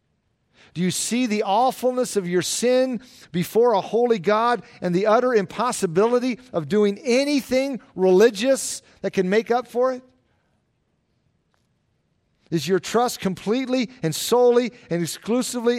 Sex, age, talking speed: male, 50-69, 130 wpm